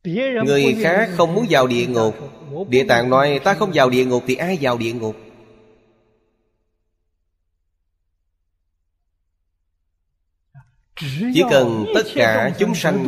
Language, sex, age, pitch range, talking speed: Vietnamese, male, 20-39, 105-145 Hz, 120 wpm